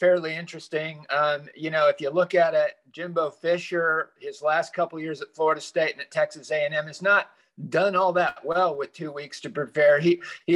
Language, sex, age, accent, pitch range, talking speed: English, male, 50-69, American, 145-185 Hz, 210 wpm